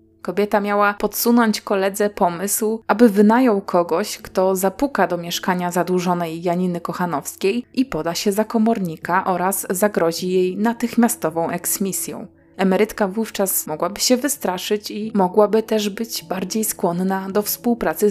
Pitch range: 185-225 Hz